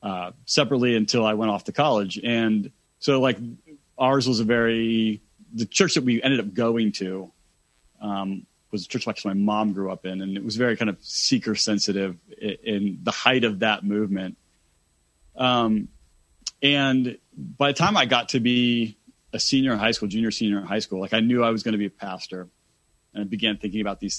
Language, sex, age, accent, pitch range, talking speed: English, male, 30-49, American, 100-120 Hz, 205 wpm